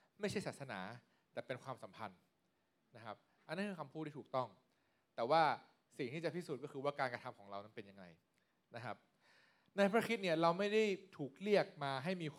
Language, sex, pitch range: Thai, male, 120-170 Hz